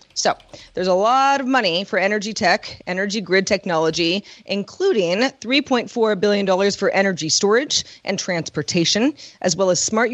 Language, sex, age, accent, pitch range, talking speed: English, female, 30-49, American, 175-220 Hz, 140 wpm